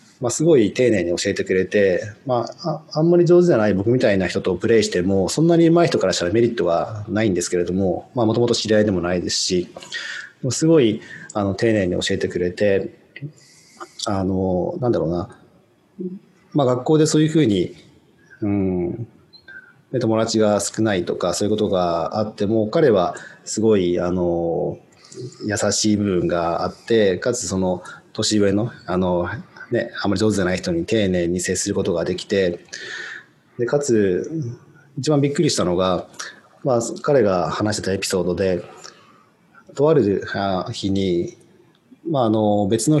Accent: Japanese